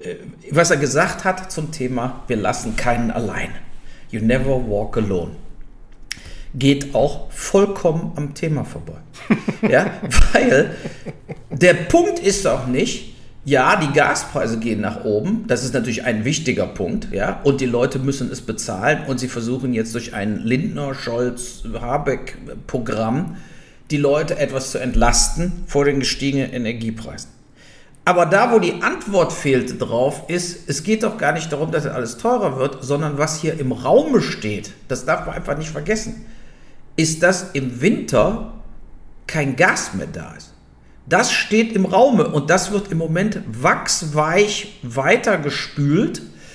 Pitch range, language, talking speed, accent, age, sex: 125-180 Hz, German, 150 wpm, German, 50-69, male